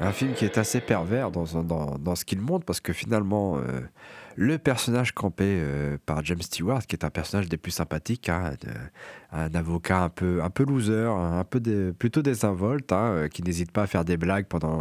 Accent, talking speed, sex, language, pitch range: French, 220 wpm, male, French, 90-125 Hz